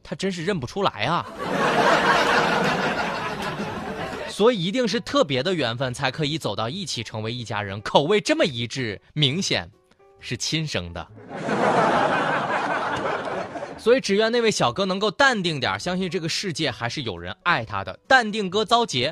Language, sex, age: Chinese, male, 20-39